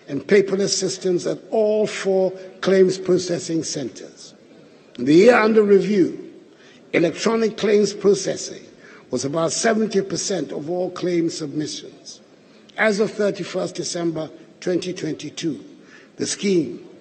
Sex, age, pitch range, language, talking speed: male, 60-79, 175-200 Hz, English, 110 wpm